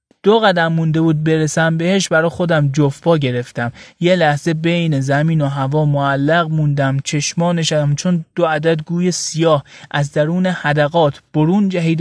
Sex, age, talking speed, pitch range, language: male, 30-49, 145 wpm, 140-175 Hz, Persian